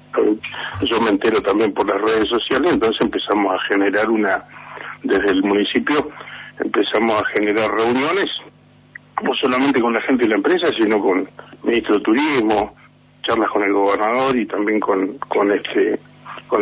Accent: Argentinian